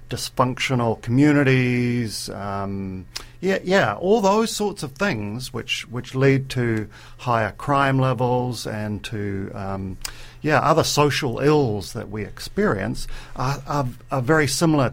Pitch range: 110-140 Hz